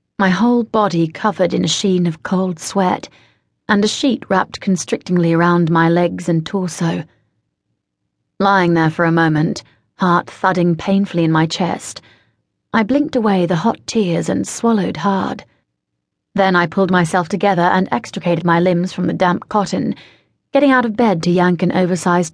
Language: English